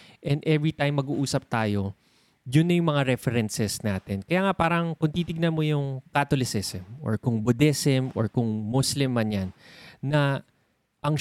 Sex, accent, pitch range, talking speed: male, native, 110-150 Hz, 150 wpm